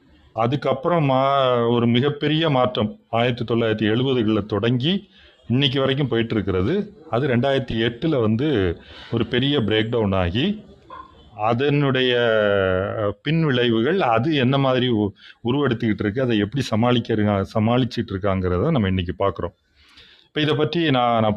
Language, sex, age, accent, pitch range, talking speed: Tamil, male, 30-49, native, 105-135 Hz, 110 wpm